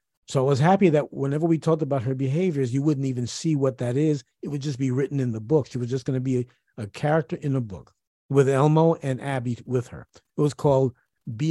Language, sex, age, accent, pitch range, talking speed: English, male, 50-69, American, 125-160 Hz, 250 wpm